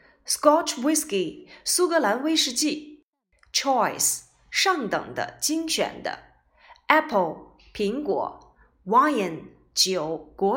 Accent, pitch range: native, 210-350 Hz